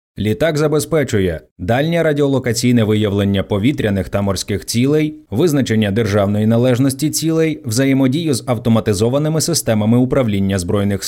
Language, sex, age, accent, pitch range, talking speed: Ukrainian, male, 20-39, native, 105-145 Hz, 105 wpm